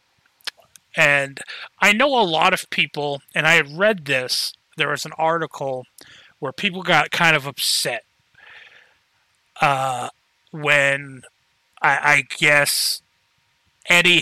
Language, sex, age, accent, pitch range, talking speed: English, male, 30-49, American, 135-165 Hz, 115 wpm